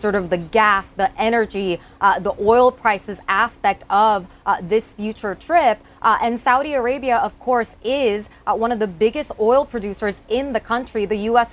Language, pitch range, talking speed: English, 200-235 Hz, 180 wpm